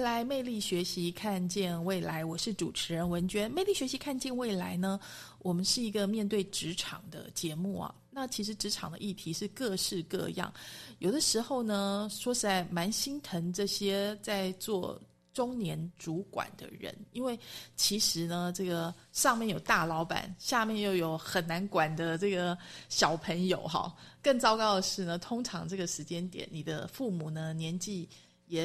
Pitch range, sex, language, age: 170-220 Hz, female, Chinese, 30-49